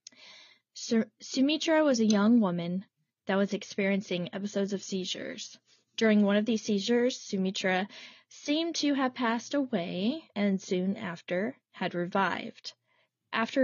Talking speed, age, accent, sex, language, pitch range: 125 wpm, 20-39, American, female, English, 190-230 Hz